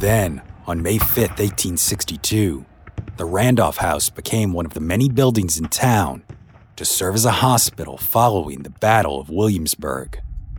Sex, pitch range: male, 85-115 Hz